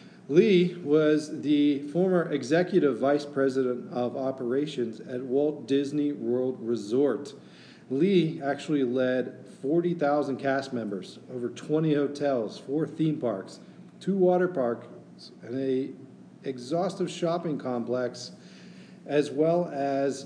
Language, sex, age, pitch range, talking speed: English, male, 40-59, 120-145 Hz, 110 wpm